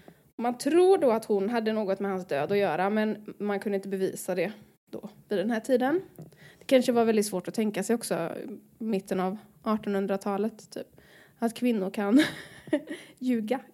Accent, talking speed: native, 180 wpm